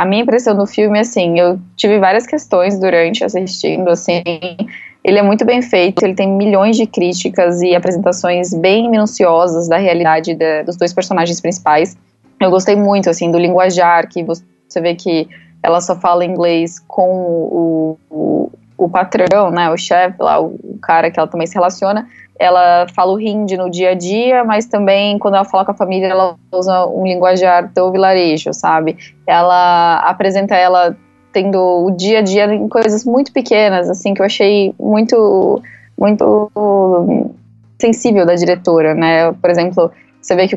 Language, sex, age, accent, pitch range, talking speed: Portuguese, female, 10-29, Brazilian, 175-200 Hz, 160 wpm